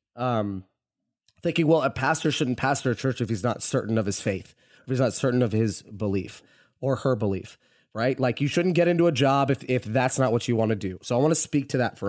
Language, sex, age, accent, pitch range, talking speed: English, male, 30-49, American, 120-150 Hz, 255 wpm